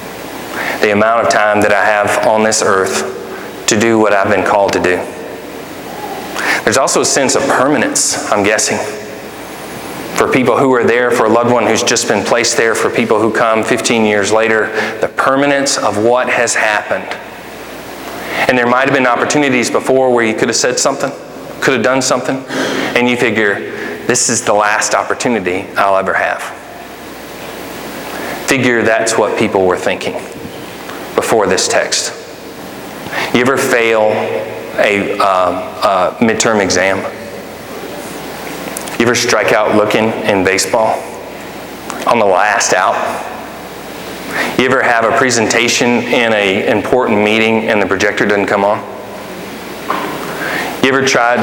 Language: English